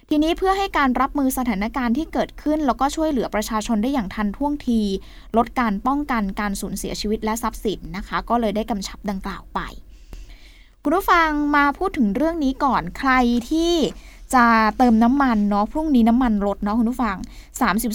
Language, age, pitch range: Thai, 20-39, 215-275 Hz